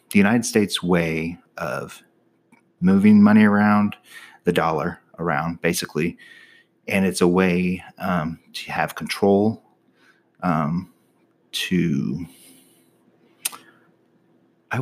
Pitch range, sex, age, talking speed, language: 85-100 Hz, male, 30-49, 95 wpm, English